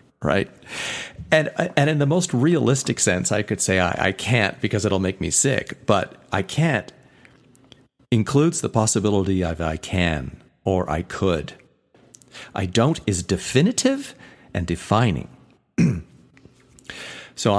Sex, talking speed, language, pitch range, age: male, 130 wpm, English, 90-130 Hz, 40-59